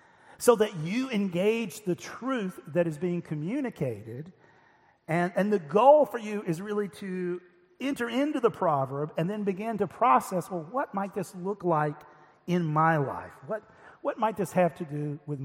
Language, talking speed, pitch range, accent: English, 175 wpm, 155-205 Hz, American